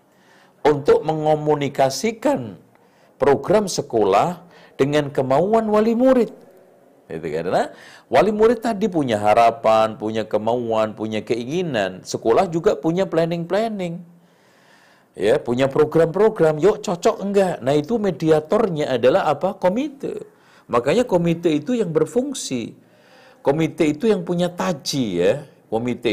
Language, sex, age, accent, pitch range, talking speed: Indonesian, male, 50-69, native, 130-195 Hz, 110 wpm